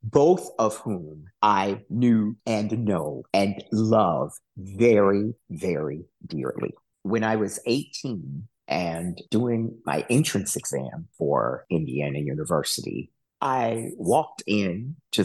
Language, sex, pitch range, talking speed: English, male, 100-130 Hz, 105 wpm